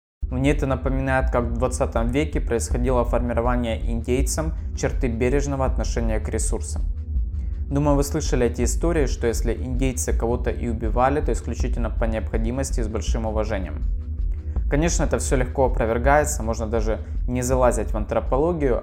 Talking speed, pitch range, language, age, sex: 145 wpm, 110-125 Hz, Russian, 20-39, male